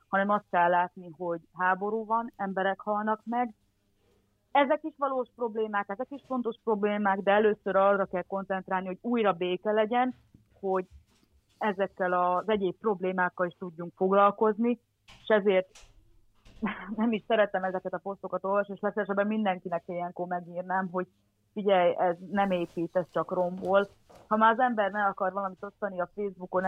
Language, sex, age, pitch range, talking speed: Hungarian, female, 30-49, 185-210 Hz, 150 wpm